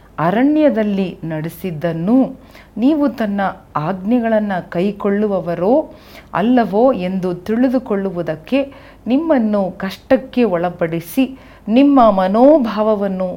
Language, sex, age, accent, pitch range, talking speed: Kannada, female, 40-59, native, 175-230 Hz, 65 wpm